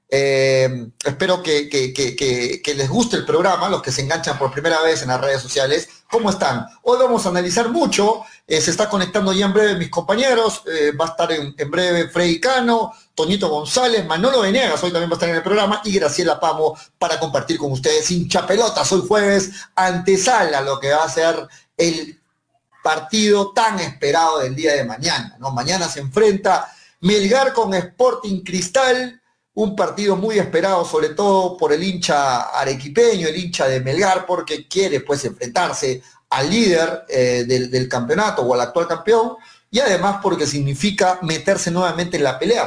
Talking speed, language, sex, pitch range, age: 175 wpm, Spanish, male, 150-205 Hz, 40-59